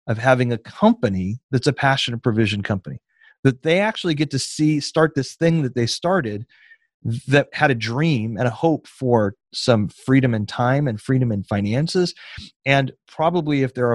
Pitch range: 115-145 Hz